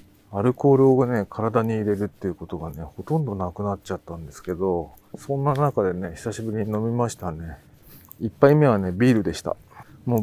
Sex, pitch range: male, 100-135 Hz